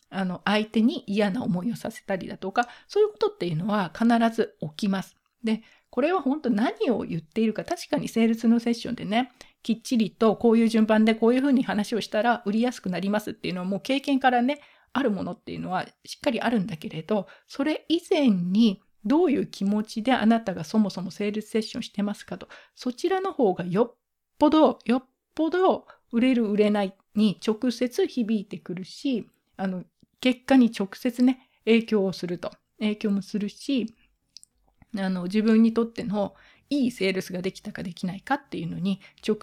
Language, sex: Japanese, female